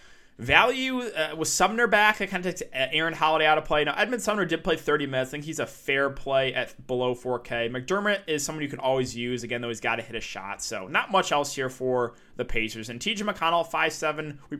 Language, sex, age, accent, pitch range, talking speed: English, male, 20-39, American, 125-155 Hz, 240 wpm